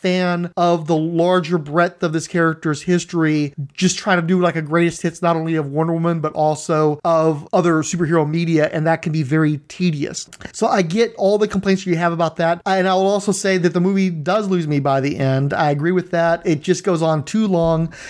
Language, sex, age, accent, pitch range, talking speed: English, male, 30-49, American, 160-200 Hz, 225 wpm